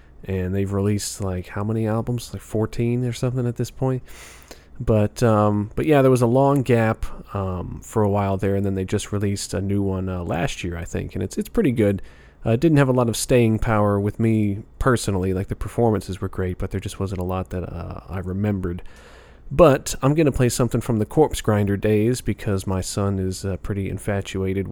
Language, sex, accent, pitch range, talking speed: English, male, American, 95-125 Hz, 220 wpm